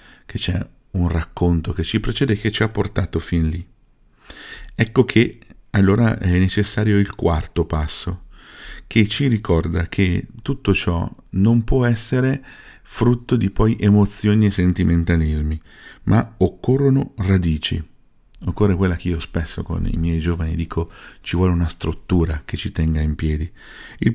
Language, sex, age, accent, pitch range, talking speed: Italian, male, 50-69, native, 80-95 Hz, 150 wpm